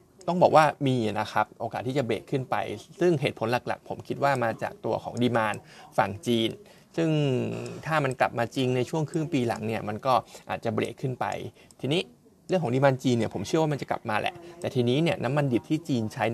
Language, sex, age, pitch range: Thai, male, 20-39, 115-150 Hz